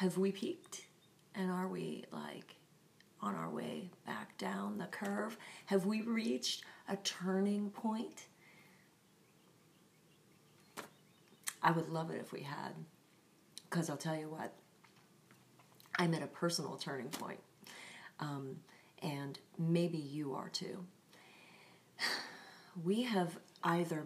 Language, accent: English, American